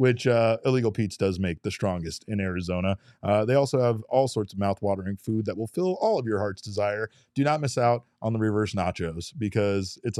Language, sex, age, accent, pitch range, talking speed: English, male, 30-49, American, 100-125 Hz, 220 wpm